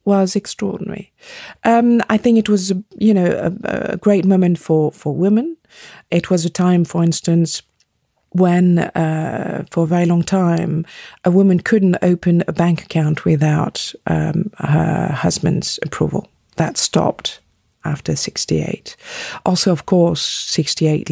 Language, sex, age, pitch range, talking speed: English, female, 50-69, 170-220 Hz, 140 wpm